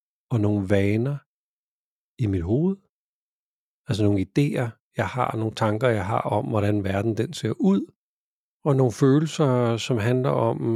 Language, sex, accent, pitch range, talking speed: Danish, male, native, 105-130 Hz, 150 wpm